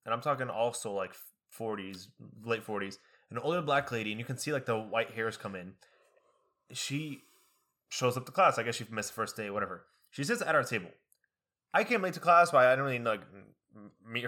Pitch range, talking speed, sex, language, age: 115-145 Hz, 215 wpm, male, English, 20-39